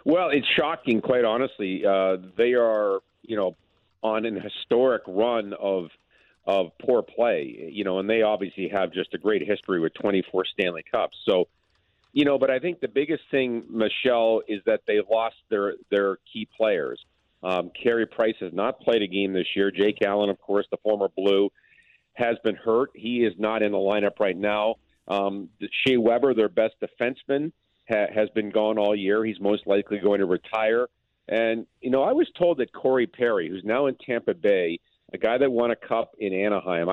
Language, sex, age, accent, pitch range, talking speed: English, male, 40-59, American, 100-120 Hz, 190 wpm